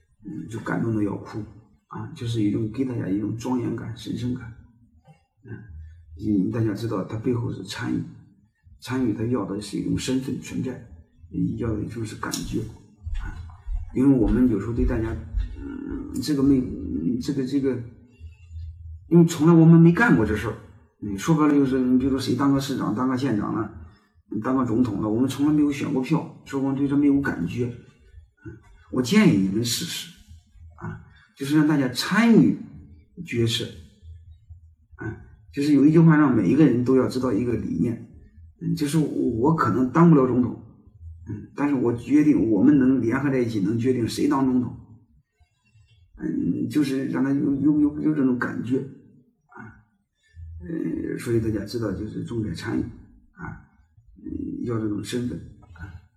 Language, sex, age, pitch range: Chinese, male, 50-69, 100-135 Hz